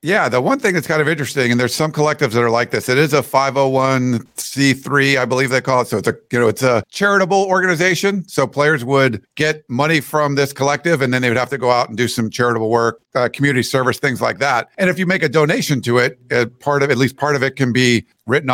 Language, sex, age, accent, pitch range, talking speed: English, male, 50-69, American, 125-165 Hz, 260 wpm